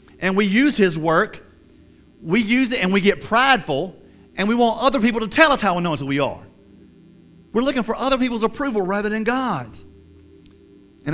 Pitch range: 150-200 Hz